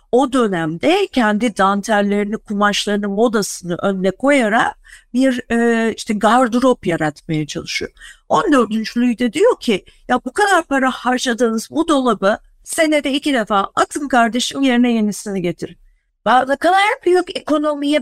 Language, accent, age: Turkish, native, 50-69